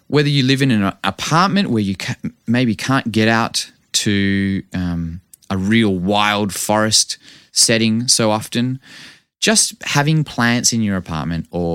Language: English